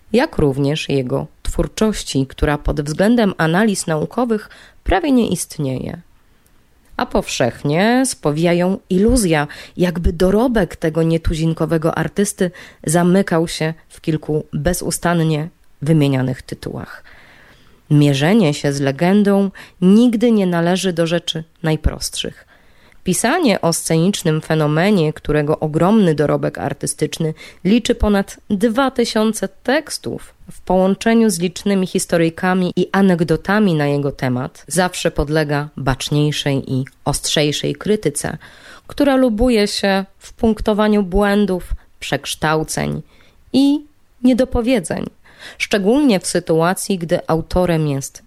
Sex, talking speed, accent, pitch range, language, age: female, 100 wpm, native, 155-205 Hz, Polish, 20-39